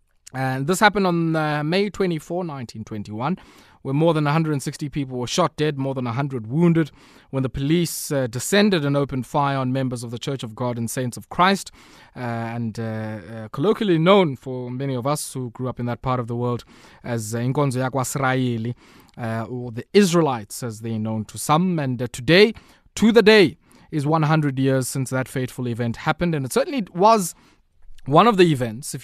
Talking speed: 190 wpm